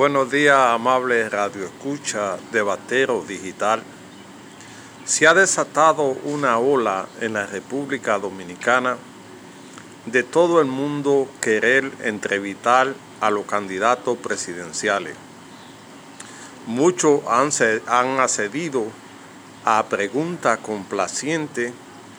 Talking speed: 85 wpm